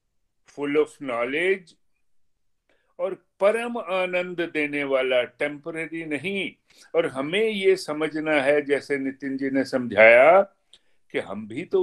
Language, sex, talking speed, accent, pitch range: Hindi, male, 115 wpm, native, 130-175 Hz